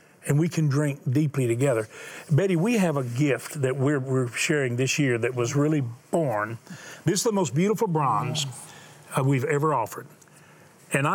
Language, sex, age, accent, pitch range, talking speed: English, male, 40-59, American, 140-180 Hz, 170 wpm